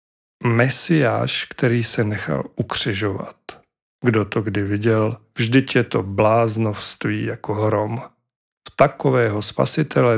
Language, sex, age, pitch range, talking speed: Czech, male, 40-59, 110-130 Hz, 105 wpm